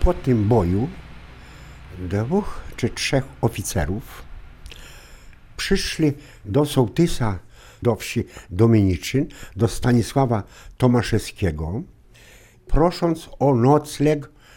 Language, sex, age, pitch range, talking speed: Polish, male, 60-79, 100-150 Hz, 80 wpm